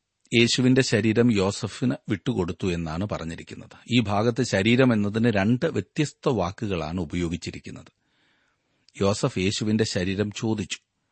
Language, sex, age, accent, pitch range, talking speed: Malayalam, male, 40-59, native, 95-125 Hz, 95 wpm